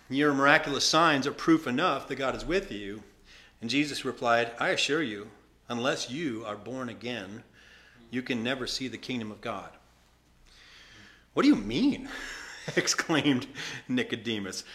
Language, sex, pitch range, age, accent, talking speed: English, male, 120-160 Hz, 40-59, American, 145 wpm